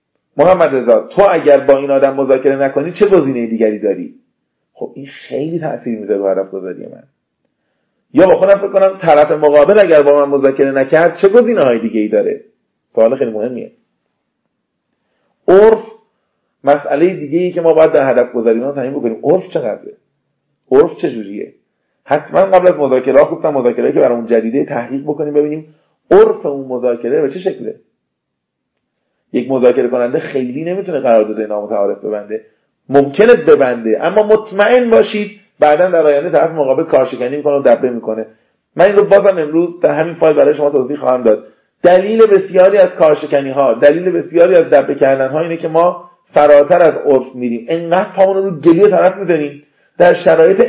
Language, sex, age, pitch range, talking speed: Persian, male, 40-59, 130-190 Hz, 160 wpm